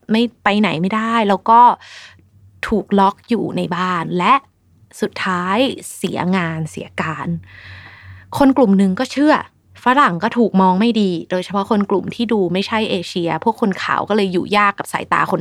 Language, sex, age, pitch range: Thai, female, 20-39, 180-230 Hz